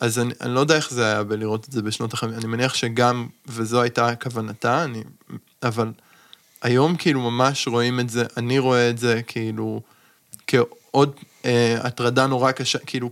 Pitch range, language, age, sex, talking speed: 120-140 Hz, Hebrew, 20-39, male, 170 wpm